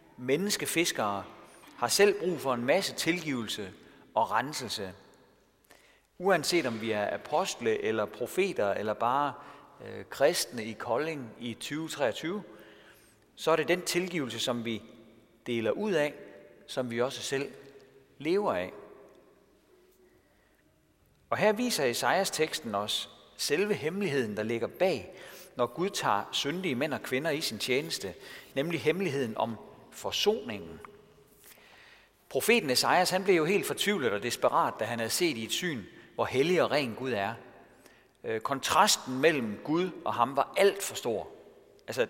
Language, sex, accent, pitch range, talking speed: Danish, male, native, 120-185 Hz, 140 wpm